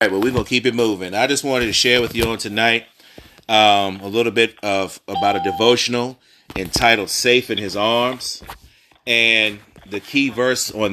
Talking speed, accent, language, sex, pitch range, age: 200 wpm, American, English, male, 100-125 Hz, 30-49